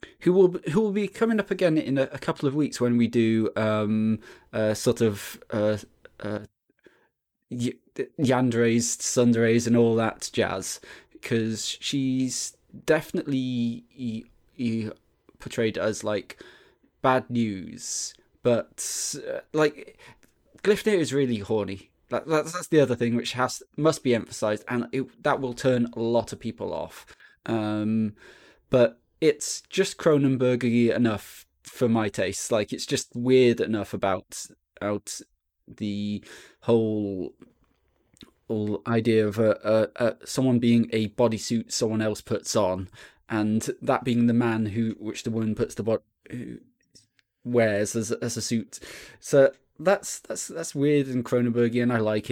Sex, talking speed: male, 150 wpm